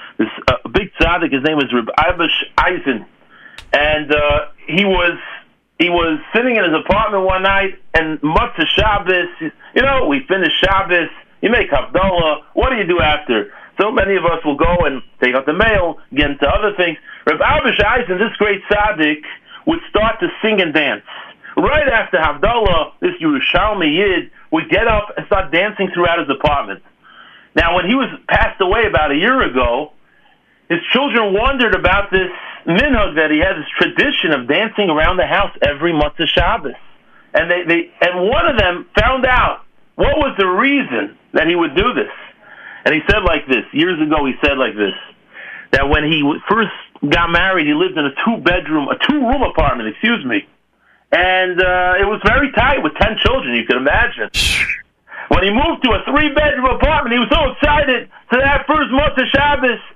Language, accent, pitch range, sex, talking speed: English, American, 170-270 Hz, male, 185 wpm